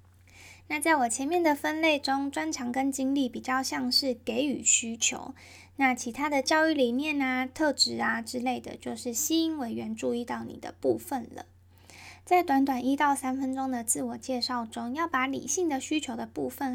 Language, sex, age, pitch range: Chinese, female, 10-29, 230-275 Hz